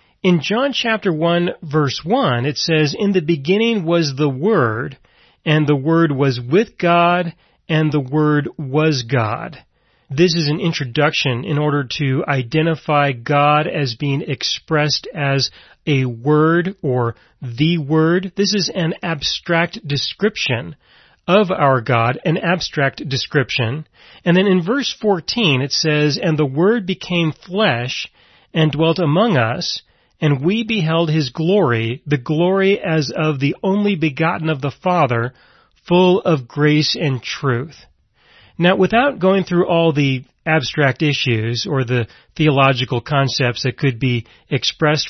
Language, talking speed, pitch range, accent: English, 140 wpm, 140-175 Hz, American